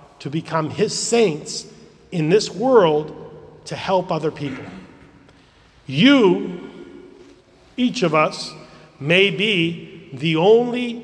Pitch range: 150-195 Hz